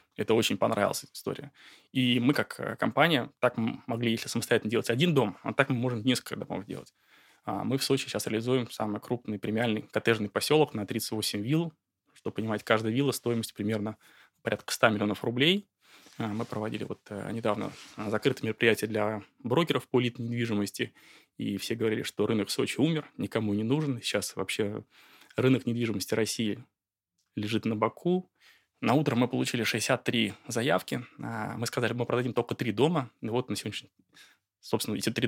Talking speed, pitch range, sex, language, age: 160 wpm, 105-125 Hz, male, Russian, 20-39